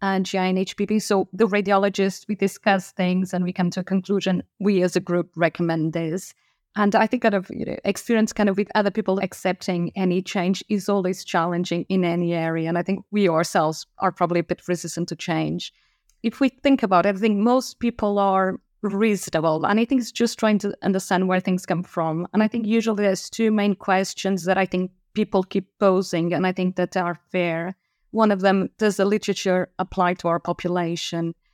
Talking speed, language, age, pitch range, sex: 210 wpm, English, 30-49, 175-200 Hz, female